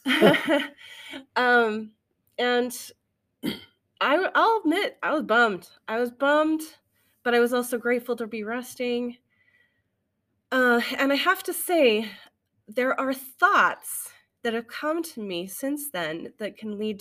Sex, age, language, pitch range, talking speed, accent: female, 30-49, English, 175-250 Hz, 135 wpm, American